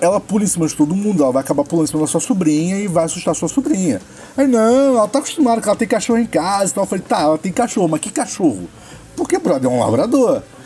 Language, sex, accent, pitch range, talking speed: Portuguese, male, Brazilian, 170-230 Hz, 260 wpm